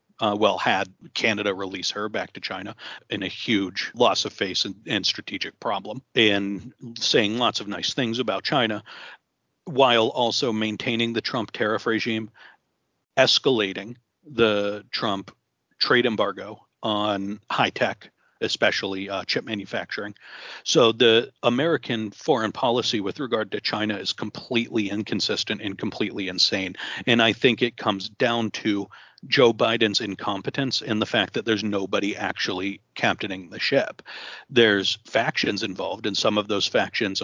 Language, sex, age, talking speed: English, male, 40-59, 145 wpm